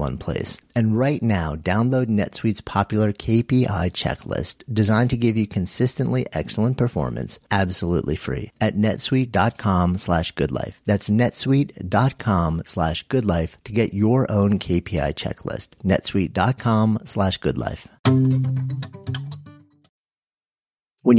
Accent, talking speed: American, 105 wpm